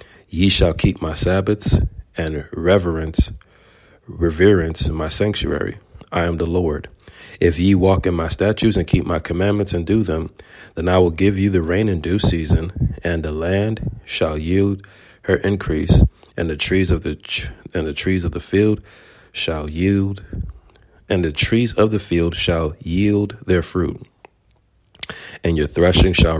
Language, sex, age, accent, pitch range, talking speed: English, male, 40-59, American, 85-100 Hz, 160 wpm